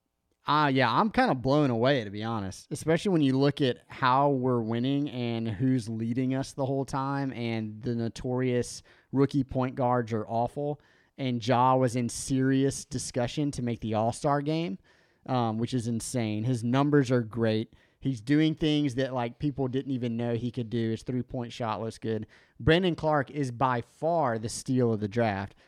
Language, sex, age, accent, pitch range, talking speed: English, male, 30-49, American, 115-145 Hz, 185 wpm